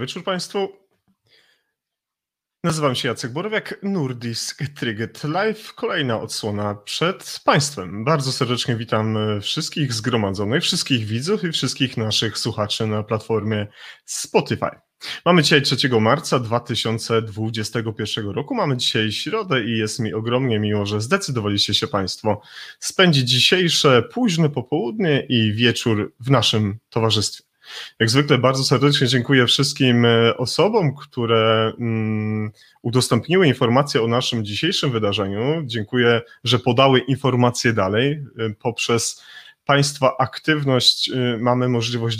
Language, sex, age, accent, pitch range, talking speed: Polish, male, 30-49, native, 110-140 Hz, 110 wpm